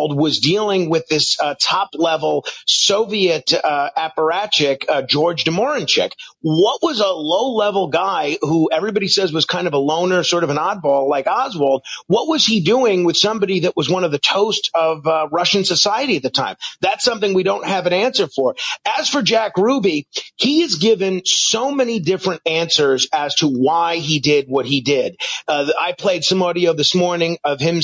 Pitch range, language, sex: 145-180 Hz, English, male